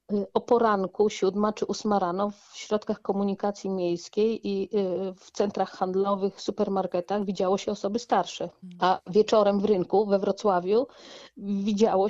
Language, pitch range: Polish, 200-235 Hz